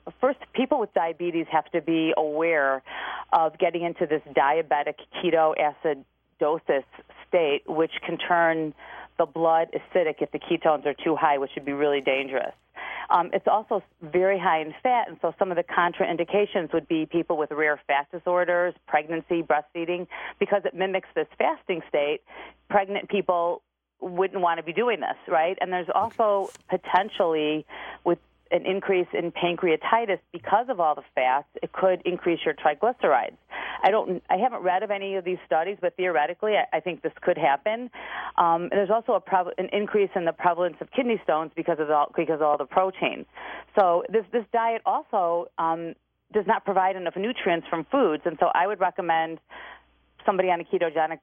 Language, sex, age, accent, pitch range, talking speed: English, female, 40-59, American, 160-190 Hz, 175 wpm